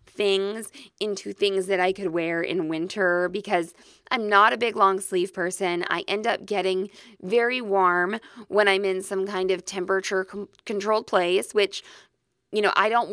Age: 20-39